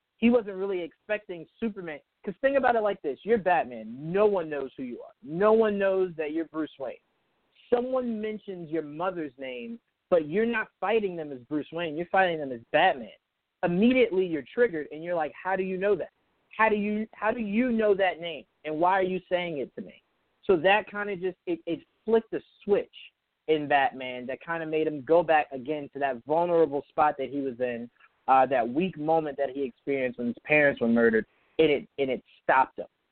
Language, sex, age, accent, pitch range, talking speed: English, male, 30-49, American, 150-205 Hz, 210 wpm